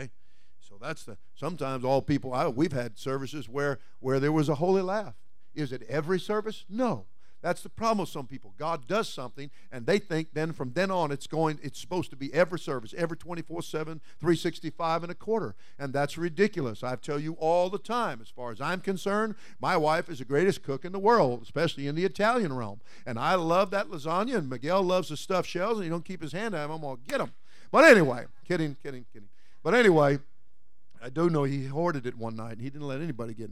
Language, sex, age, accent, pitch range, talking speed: English, male, 50-69, American, 125-180 Hz, 220 wpm